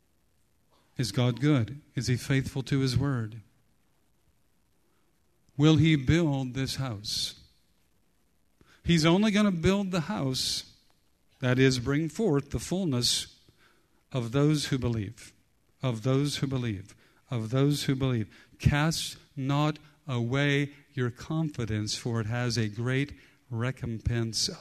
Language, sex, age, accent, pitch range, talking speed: English, male, 50-69, American, 115-170 Hz, 120 wpm